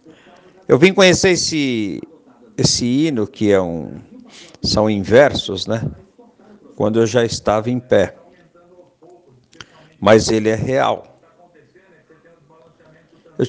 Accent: Brazilian